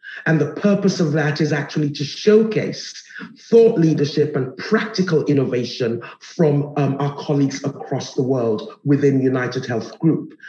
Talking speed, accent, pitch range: 145 wpm, British, 145-180 Hz